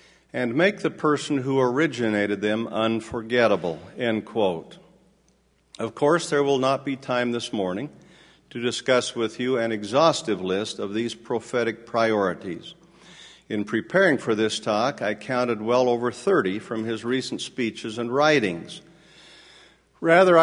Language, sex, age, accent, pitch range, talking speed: English, male, 50-69, American, 115-140 Hz, 140 wpm